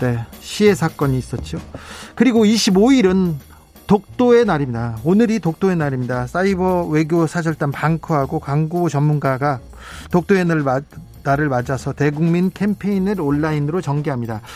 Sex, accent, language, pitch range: male, native, Korean, 145-190 Hz